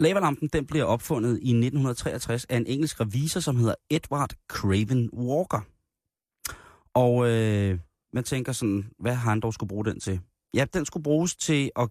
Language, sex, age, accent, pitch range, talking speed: Danish, male, 30-49, native, 100-125 Hz, 170 wpm